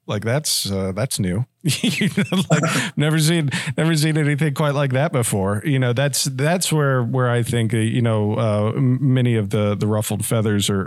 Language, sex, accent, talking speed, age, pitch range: English, male, American, 200 wpm, 40-59, 105-130 Hz